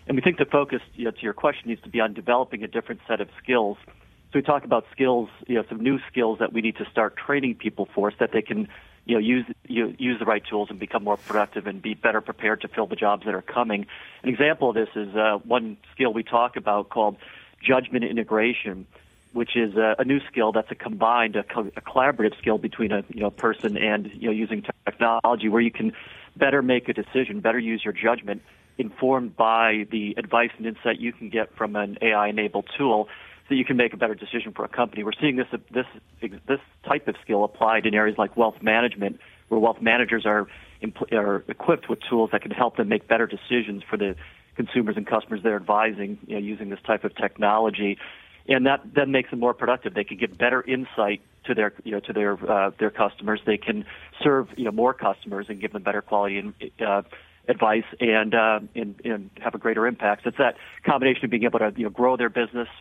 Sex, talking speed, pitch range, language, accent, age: male, 215 wpm, 105-120 Hz, English, American, 40-59